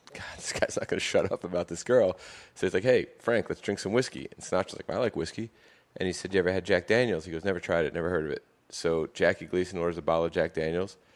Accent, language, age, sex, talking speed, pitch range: American, English, 30-49, male, 280 wpm, 85-95 Hz